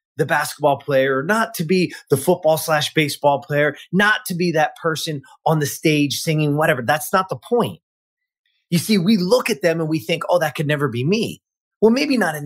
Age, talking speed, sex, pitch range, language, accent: 30-49, 215 wpm, male, 135-185 Hz, English, American